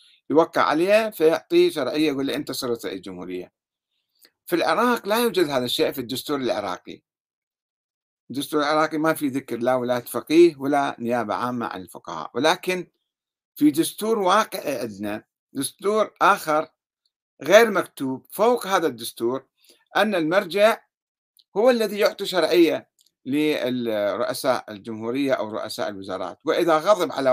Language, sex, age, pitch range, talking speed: Arabic, male, 50-69, 130-185 Hz, 120 wpm